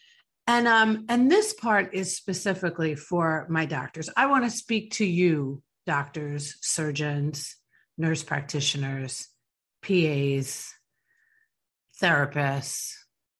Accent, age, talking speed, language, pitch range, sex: American, 50-69, 95 wpm, English, 155-210 Hz, female